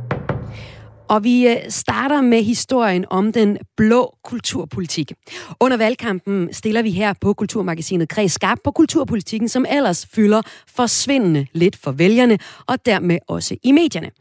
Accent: native